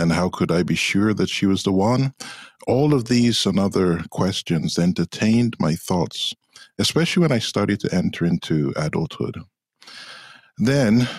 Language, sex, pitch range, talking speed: English, male, 85-115 Hz, 155 wpm